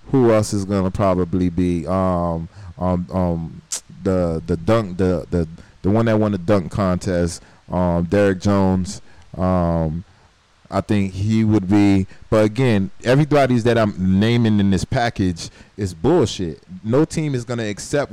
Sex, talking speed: male, 160 wpm